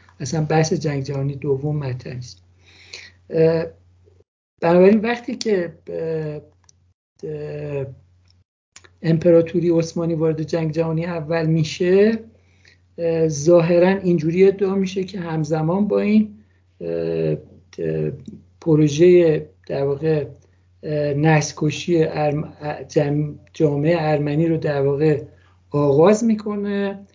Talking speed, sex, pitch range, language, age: 75 wpm, male, 140-170 Hz, Persian, 60-79